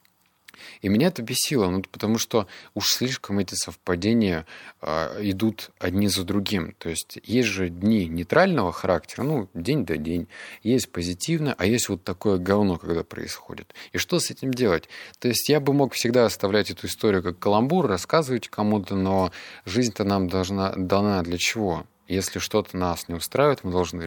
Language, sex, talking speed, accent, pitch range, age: Russian, male, 170 wpm, native, 90-115 Hz, 20-39